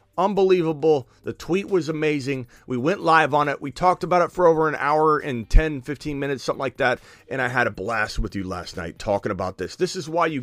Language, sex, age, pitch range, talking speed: English, male, 40-59, 130-180 Hz, 235 wpm